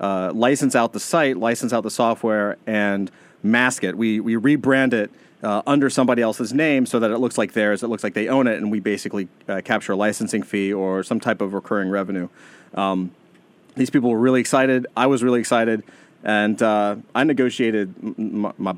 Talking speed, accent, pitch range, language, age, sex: 195 wpm, American, 105-125 Hz, English, 30-49, male